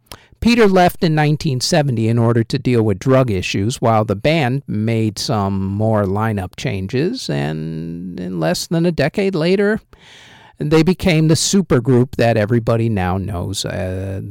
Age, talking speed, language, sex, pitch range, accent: 50-69, 145 wpm, English, male, 110-150 Hz, American